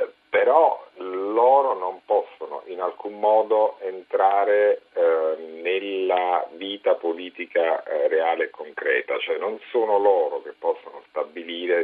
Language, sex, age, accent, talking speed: Italian, male, 50-69, native, 115 wpm